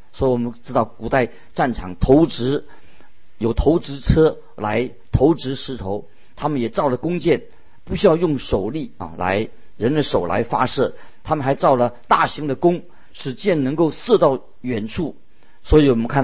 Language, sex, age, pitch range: Chinese, male, 50-69, 110-140 Hz